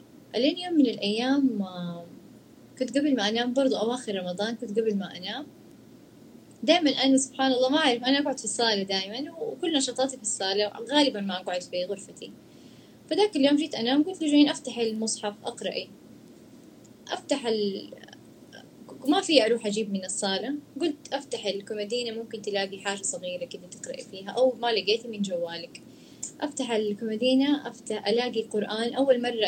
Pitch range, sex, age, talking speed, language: 205-270 Hz, female, 20-39, 150 wpm, Arabic